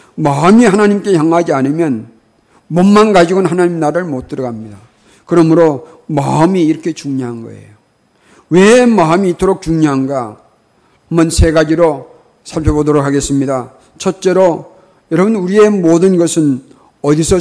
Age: 50-69